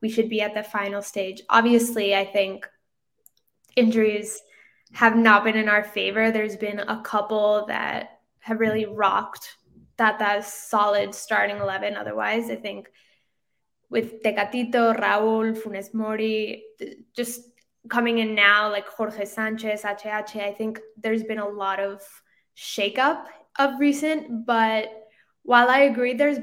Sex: female